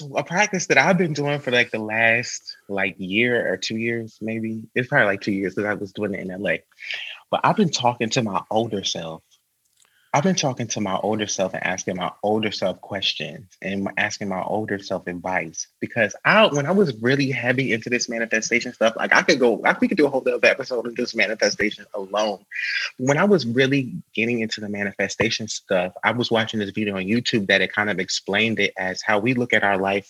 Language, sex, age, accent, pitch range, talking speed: English, male, 30-49, American, 105-135 Hz, 220 wpm